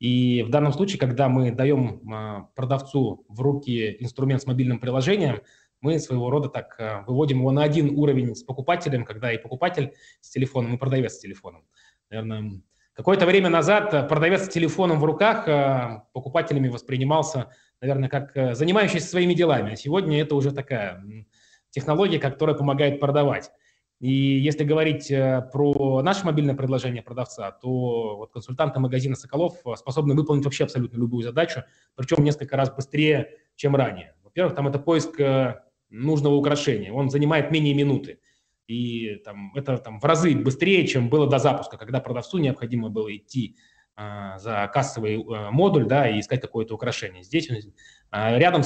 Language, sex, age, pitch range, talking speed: Russian, male, 20-39, 120-150 Hz, 145 wpm